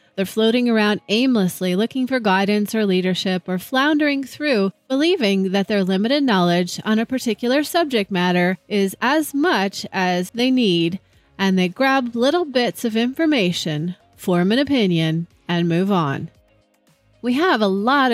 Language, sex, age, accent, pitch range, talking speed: English, female, 30-49, American, 185-260 Hz, 150 wpm